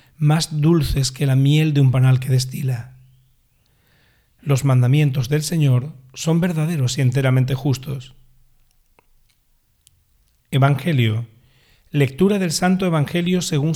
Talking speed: 110 wpm